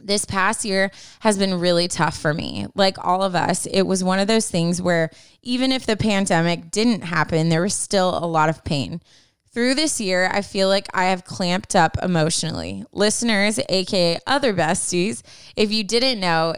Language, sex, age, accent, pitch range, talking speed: English, female, 20-39, American, 165-200 Hz, 190 wpm